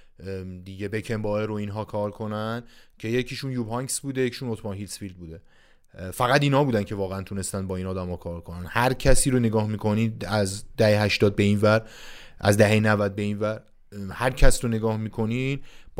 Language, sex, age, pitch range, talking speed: Persian, male, 30-49, 100-120 Hz, 190 wpm